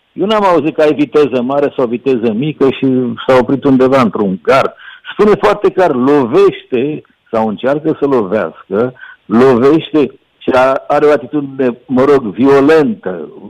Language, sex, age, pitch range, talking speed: Romanian, male, 60-79, 130-185 Hz, 140 wpm